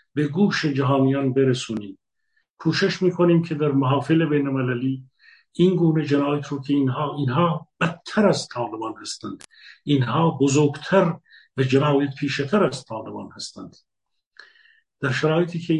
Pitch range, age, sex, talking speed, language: 135-170 Hz, 50-69, male, 120 wpm, Persian